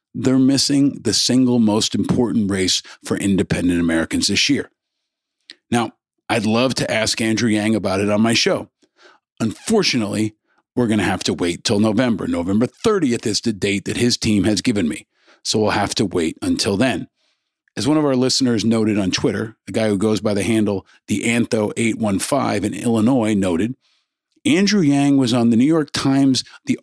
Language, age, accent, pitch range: English, 50-69, American, 105-135 Hz